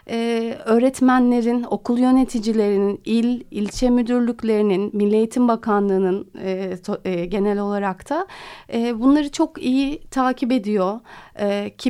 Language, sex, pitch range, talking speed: Turkish, female, 215-260 Hz, 120 wpm